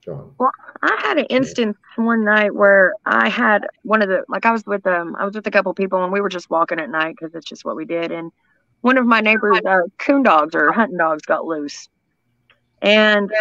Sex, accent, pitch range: female, American, 180-245 Hz